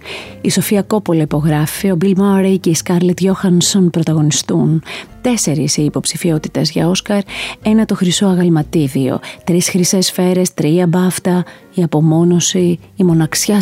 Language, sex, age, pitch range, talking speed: Greek, female, 30-49, 160-195 Hz, 130 wpm